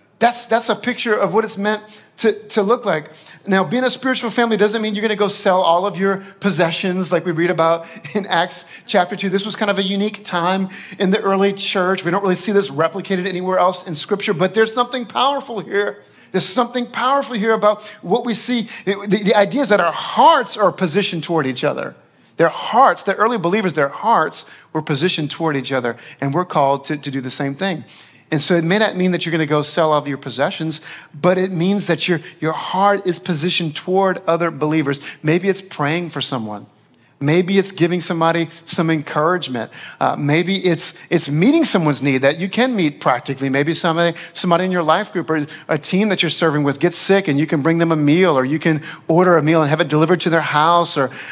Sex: male